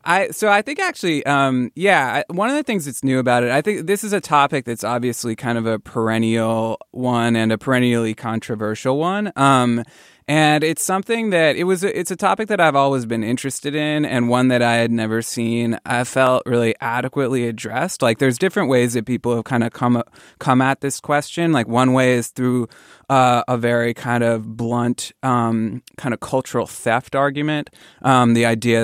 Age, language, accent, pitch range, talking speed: 20-39, English, American, 115-145 Hz, 195 wpm